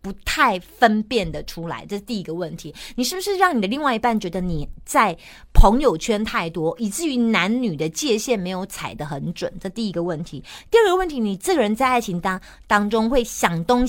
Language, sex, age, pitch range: Chinese, female, 30-49, 180-250 Hz